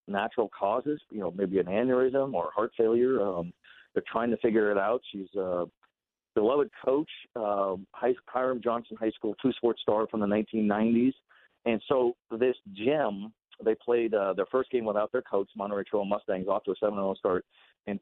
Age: 50-69